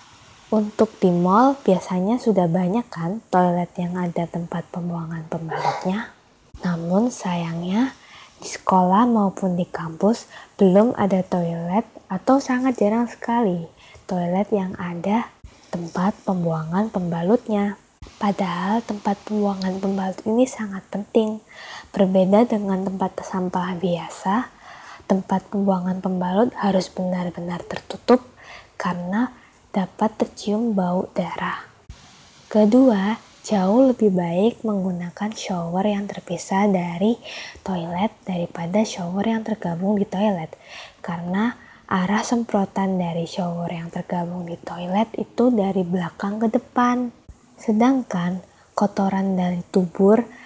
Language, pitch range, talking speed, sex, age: Indonesian, 180-215 Hz, 105 wpm, female, 20-39